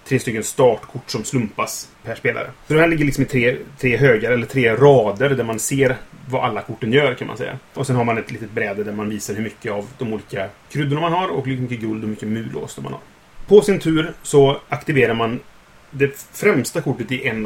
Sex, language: male, Swedish